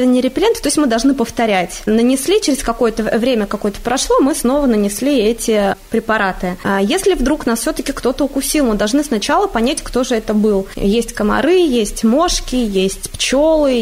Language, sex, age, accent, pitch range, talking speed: Russian, female, 20-39, native, 210-265 Hz, 170 wpm